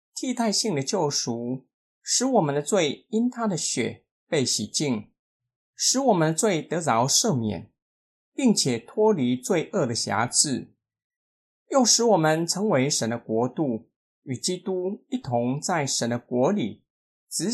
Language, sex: Chinese, male